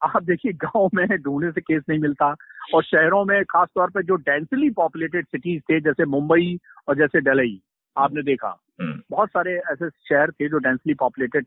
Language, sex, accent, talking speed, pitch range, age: Hindi, male, native, 185 wpm, 160-215 Hz, 50-69